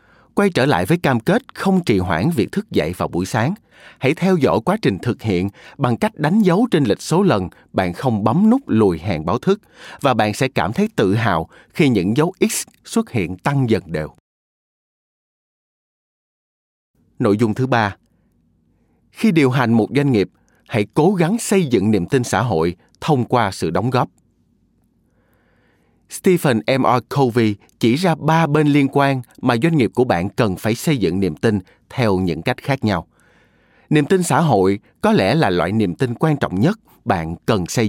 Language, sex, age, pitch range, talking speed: Vietnamese, male, 20-39, 95-145 Hz, 190 wpm